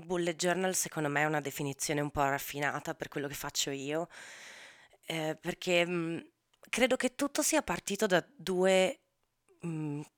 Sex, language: female, Italian